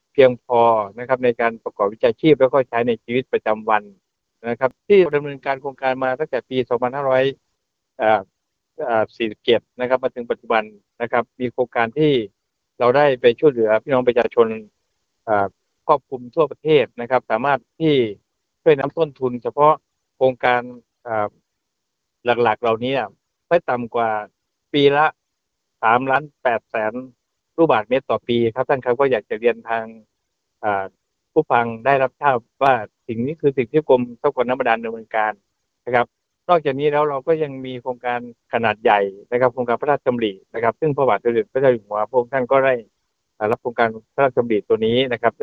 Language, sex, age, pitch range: Thai, male, 60-79, 115-140 Hz